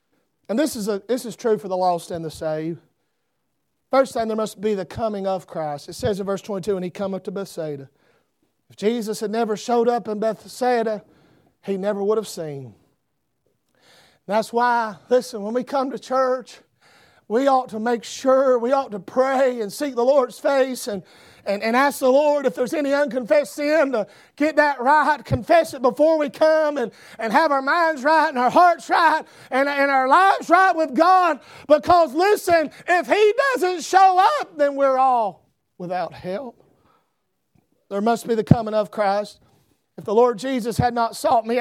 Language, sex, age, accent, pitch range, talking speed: English, male, 40-59, American, 215-290 Hz, 190 wpm